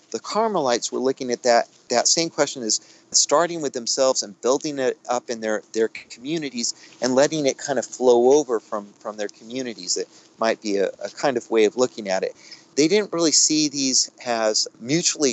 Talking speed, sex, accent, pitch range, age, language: 200 wpm, male, American, 115-155 Hz, 40-59, English